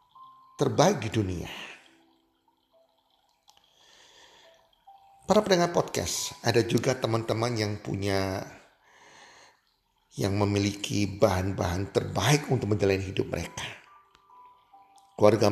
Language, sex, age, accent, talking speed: Indonesian, male, 50-69, native, 75 wpm